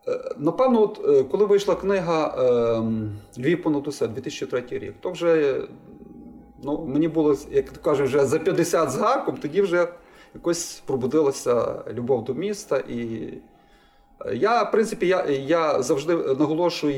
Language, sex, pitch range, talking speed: Ukrainian, male, 130-205 Hz, 120 wpm